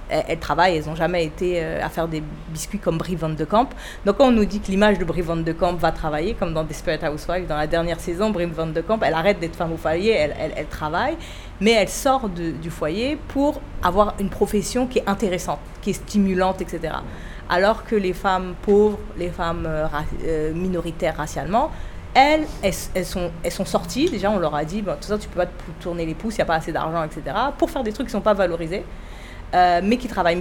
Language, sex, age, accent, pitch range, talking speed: French, female, 30-49, French, 165-205 Hz, 245 wpm